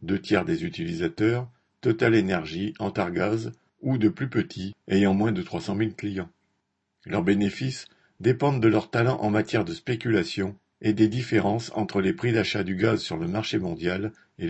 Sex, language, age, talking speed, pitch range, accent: male, French, 50-69, 170 wpm, 105-125 Hz, French